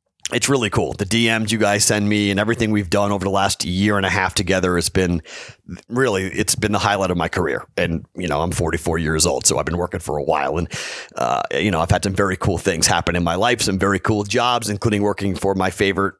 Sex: male